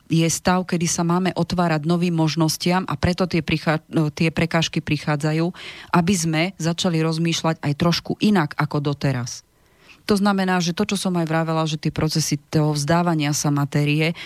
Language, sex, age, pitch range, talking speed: Slovak, female, 30-49, 150-175 Hz, 170 wpm